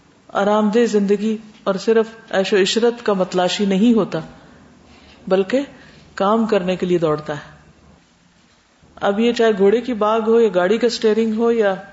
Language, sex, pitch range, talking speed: Urdu, female, 185-225 Hz, 155 wpm